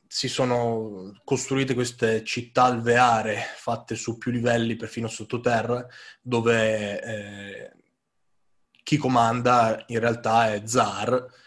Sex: male